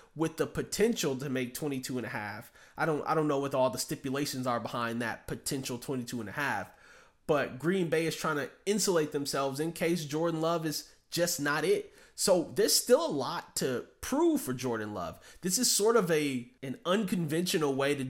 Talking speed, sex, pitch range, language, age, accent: 200 wpm, male, 130-165 Hz, English, 20-39, American